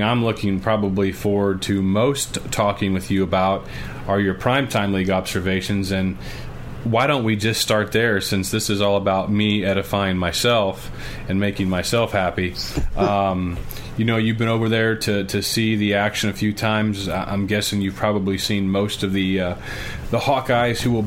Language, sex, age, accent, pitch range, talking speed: English, male, 30-49, American, 100-115 Hz, 175 wpm